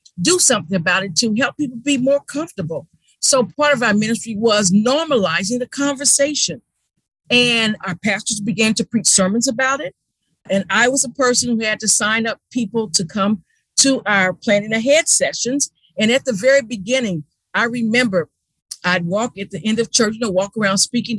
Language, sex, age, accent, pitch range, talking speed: English, female, 50-69, American, 195-275 Hz, 185 wpm